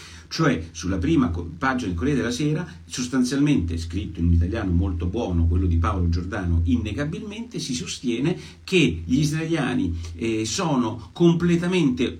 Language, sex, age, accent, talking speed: Italian, male, 50-69, native, 135 wpm